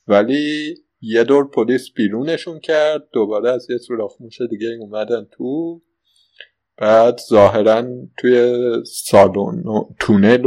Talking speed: 115 wpm